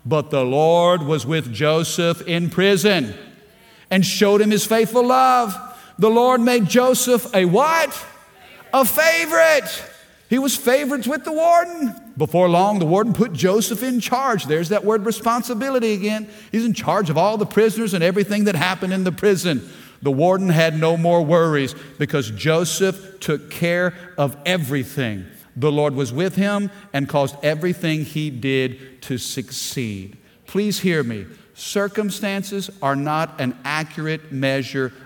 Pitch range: 140-205 Hz